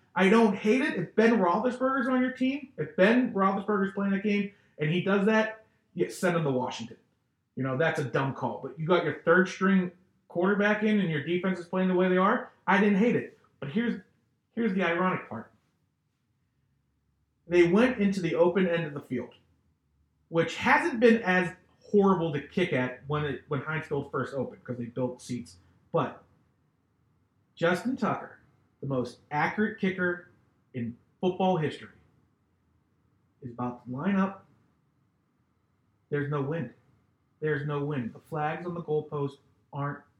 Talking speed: 165 wpm